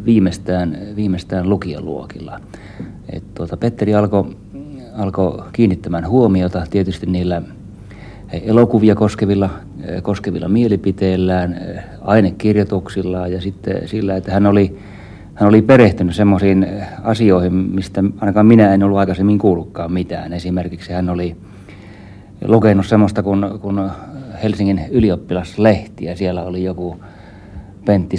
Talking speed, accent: 110 wpm, native